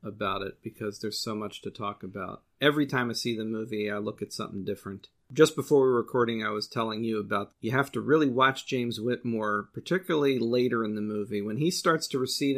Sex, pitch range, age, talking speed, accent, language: male, 115-140 Hz, 40-59, 225 wpm, American, English